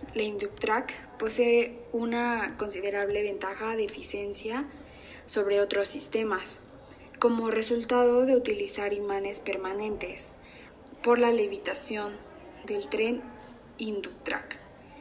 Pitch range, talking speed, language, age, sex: 200-240 Hz, 90 wpm, Spanish, 20-39, female